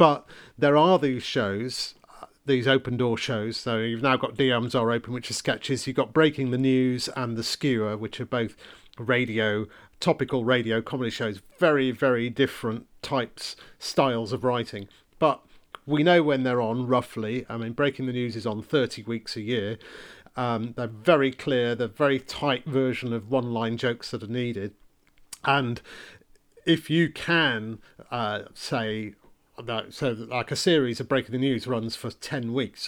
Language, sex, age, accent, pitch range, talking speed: English, male, 40-59, British, 115-135 Hz, 170 wpm